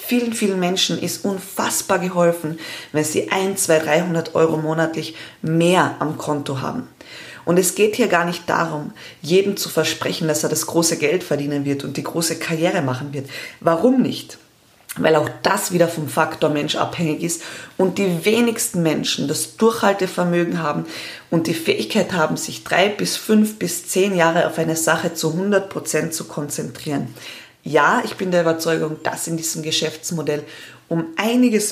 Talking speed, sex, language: 165 wpm, female, German